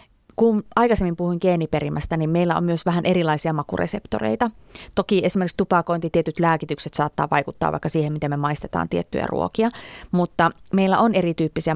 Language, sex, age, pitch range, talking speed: Finnish, female, 30-49, 155-180 Hz, 150 wpm